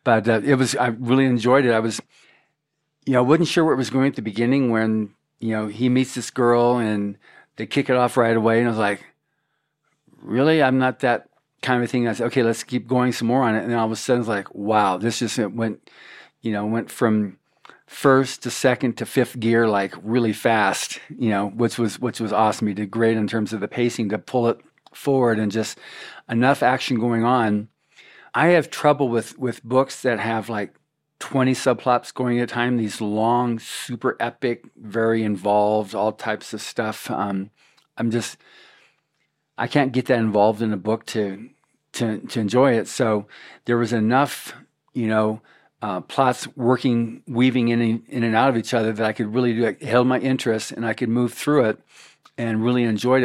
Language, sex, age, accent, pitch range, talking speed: English, male, 50-69, American, 110-125 Hz, 210 wpm